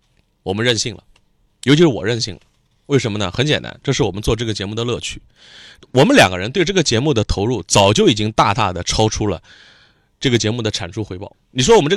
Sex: male